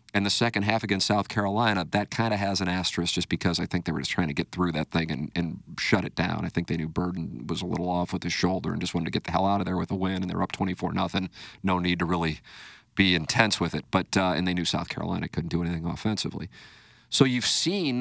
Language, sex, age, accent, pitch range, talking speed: English, male, 40-59, American, 90-110 Hz, 275 wpm